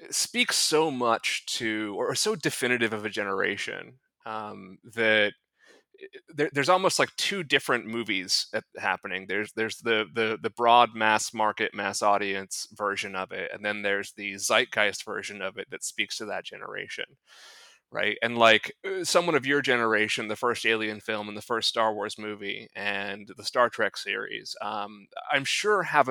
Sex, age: male, 30-49